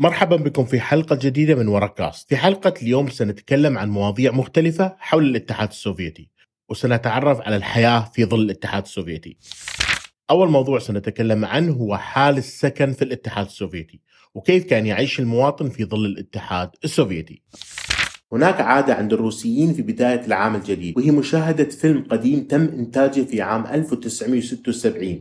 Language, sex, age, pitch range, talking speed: Arabic, male, 30-49, 115-155 Hz, 140 wpm